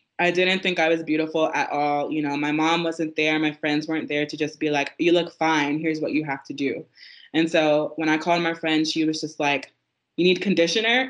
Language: English